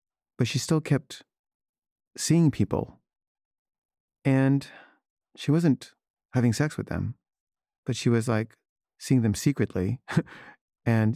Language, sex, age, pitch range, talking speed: English, male, 40-59, 110-135 Hz, 115 wpm